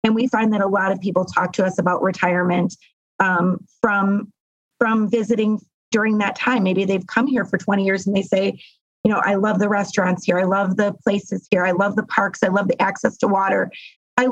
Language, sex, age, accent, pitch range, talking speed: English, female, 30-49, American, 195-240 Hz, 220 wpm